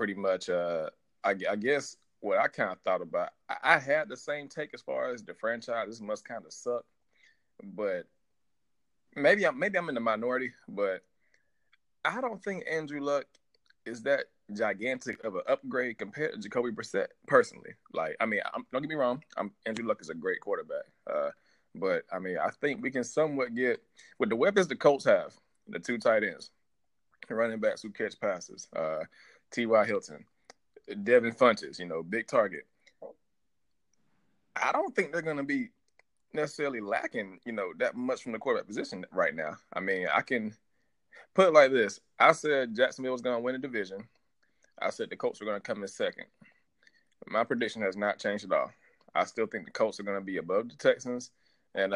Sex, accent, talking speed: male, American, 195 wpm